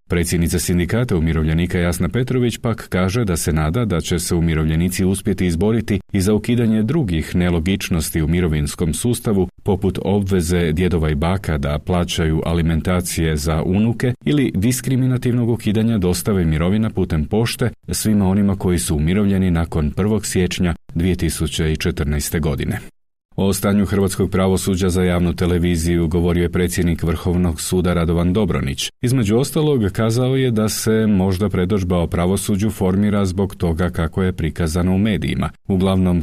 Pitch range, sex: 85-105 Hz, male